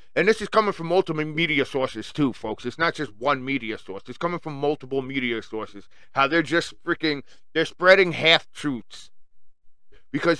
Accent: American